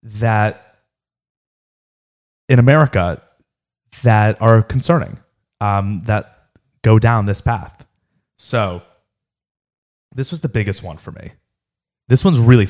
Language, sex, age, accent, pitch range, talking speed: English, male, 30-49, American, 100-135 Hz, 110 wpm